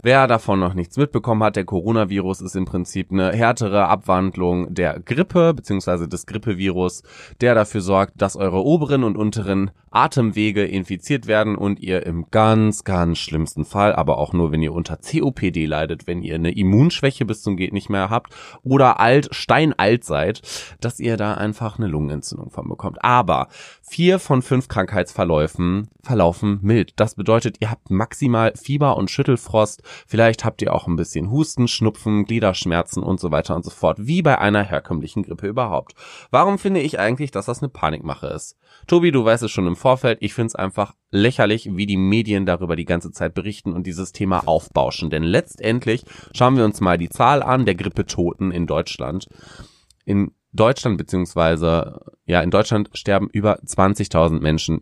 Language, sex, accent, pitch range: German, male, German, 90-115 Hz